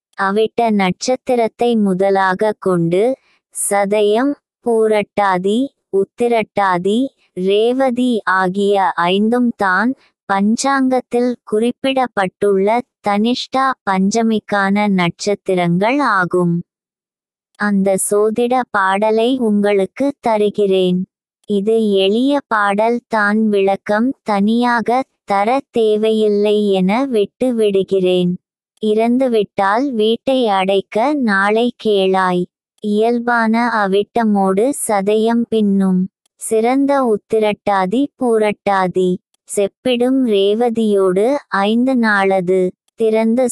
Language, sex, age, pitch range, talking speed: Tamil, male, 20-39, 195-235 Hz, 70 wpm